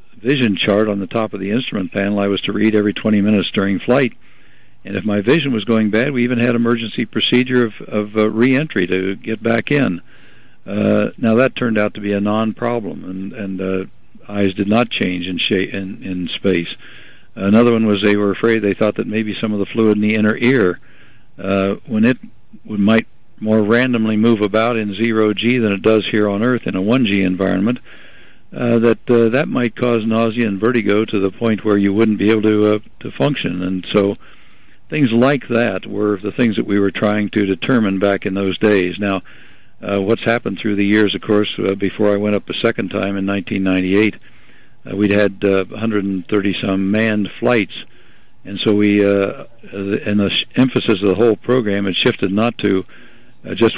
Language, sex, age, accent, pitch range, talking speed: English, male, 60-79, American, 100-115 Hz, 205 wpm